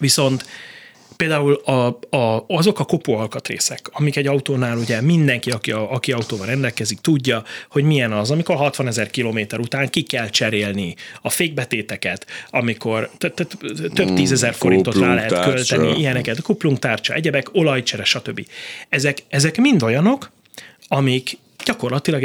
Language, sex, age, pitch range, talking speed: Hungarian, male, 30-49, 115-155 Hz, 130 wpm